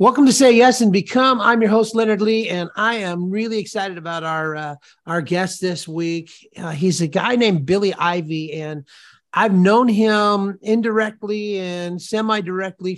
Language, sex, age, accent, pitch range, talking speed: English, male, 40-59, American, 165-205 Hz, 170 wpm